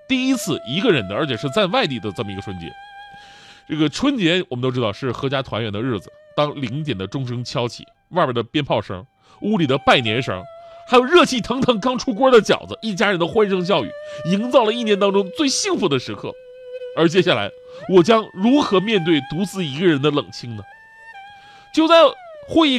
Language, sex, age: Chinese, male, 30-49